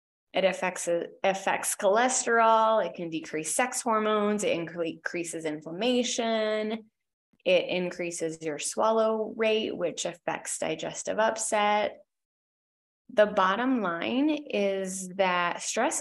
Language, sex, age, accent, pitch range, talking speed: English, female, 20-39, American, 180-235 Hz, 100 wpm